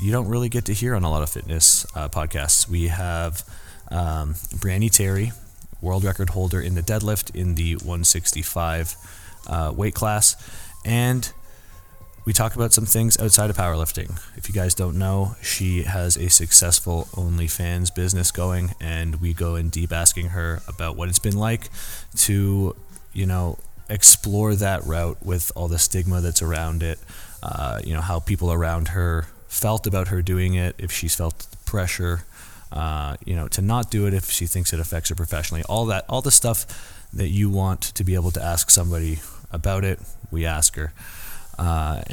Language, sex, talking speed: English, male, 180 wpm